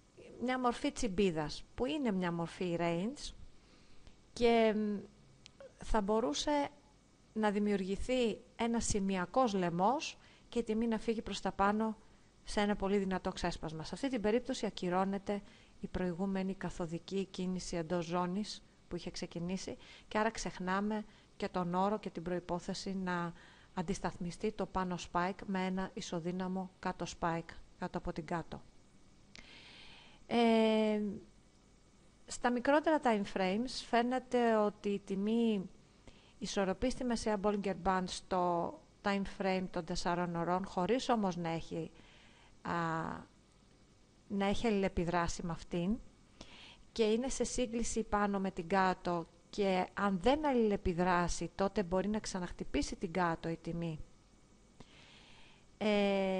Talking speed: 120 wpm